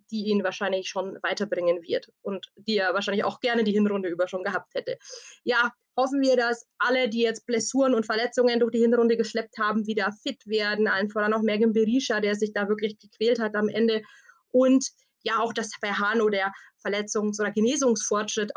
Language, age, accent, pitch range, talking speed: German, 20-39, German, 215-250 Hz, 190 wpm